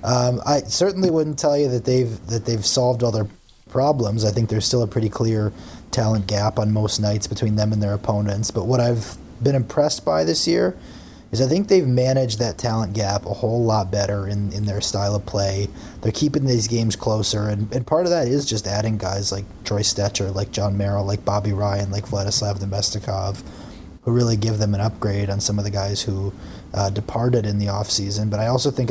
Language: English